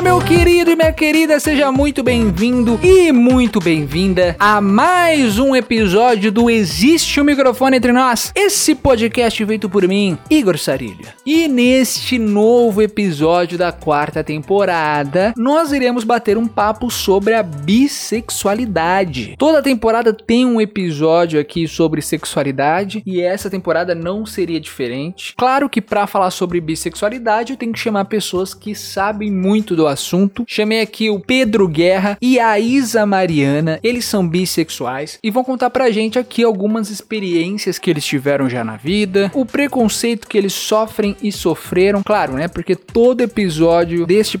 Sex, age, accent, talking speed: male, 20-39, Brazilian, 150 wpm